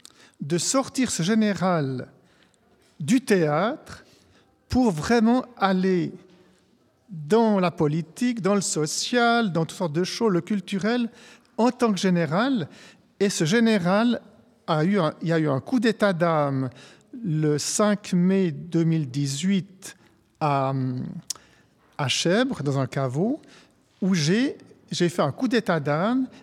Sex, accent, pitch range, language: male, French, 155-210 Hz, French